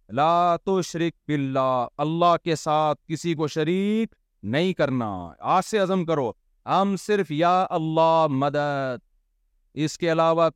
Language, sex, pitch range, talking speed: Urdu, male, 150-215 Hz, 130 wpm